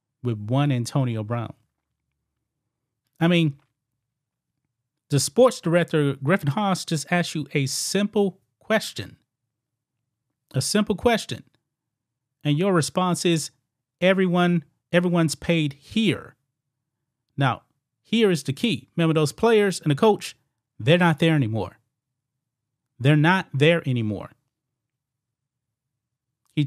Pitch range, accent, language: 125-165 Hz, American, English